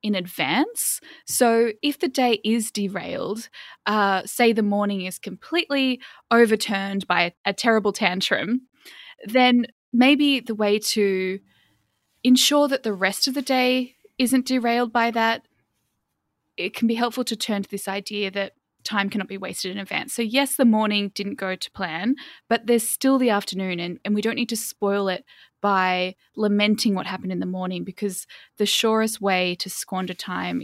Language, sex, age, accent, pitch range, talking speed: English, female, 10-29, Australian, 190-235 Hz, 170 wpm